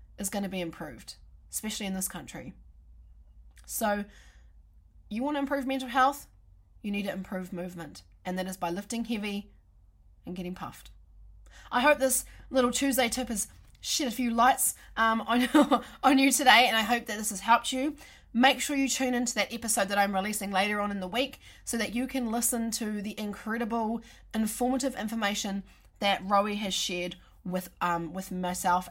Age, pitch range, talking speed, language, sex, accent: 20-39, 180-245 Hz, 180 wpm, English, female, Australian